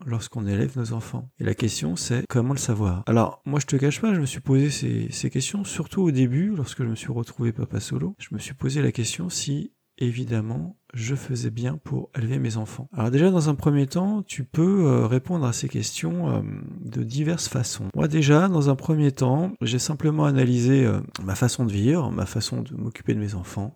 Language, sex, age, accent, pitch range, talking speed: French, male, 40-59, French, 120-155 Hz, 210 wpm